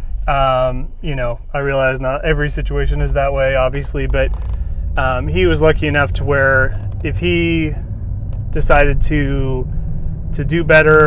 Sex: male